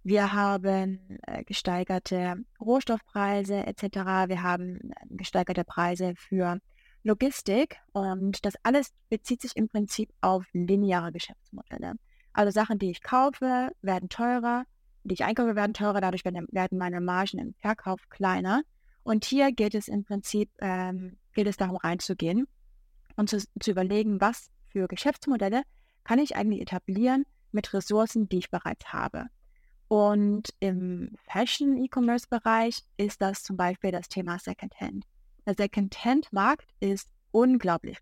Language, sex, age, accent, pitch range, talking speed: German, female, 20-39, German, 190-230 Hz, 130 wpm